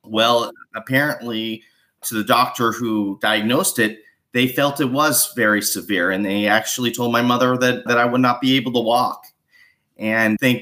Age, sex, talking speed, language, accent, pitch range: 30-49, male, 175 wpm, English, American, 105-125 Hz